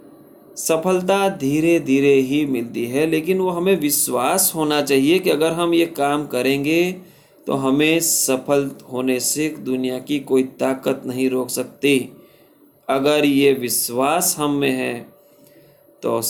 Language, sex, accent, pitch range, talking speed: Hindi, male, native, 125-175 Hz, 135 wpm